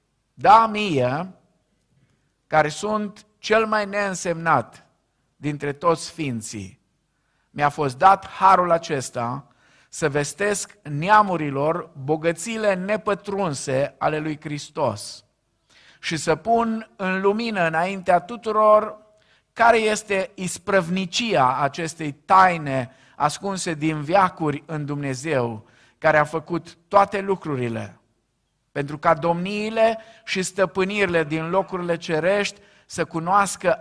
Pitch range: 145-200 Hz